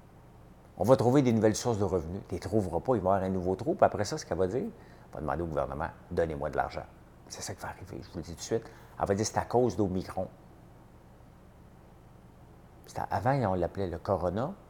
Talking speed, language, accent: 240 wpm, French, French